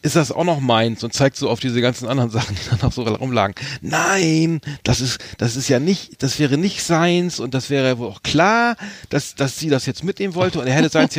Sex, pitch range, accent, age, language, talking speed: male, 140-195 Hz, German, 40-59, German, 250 wpm